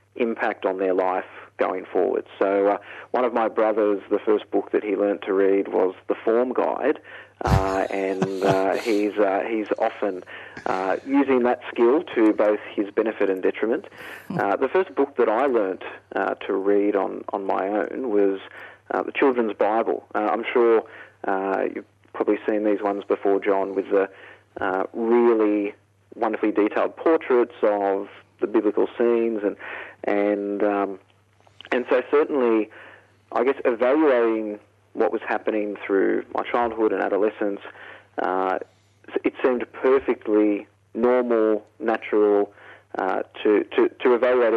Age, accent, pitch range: 40-59, Australian, 100-110 Hz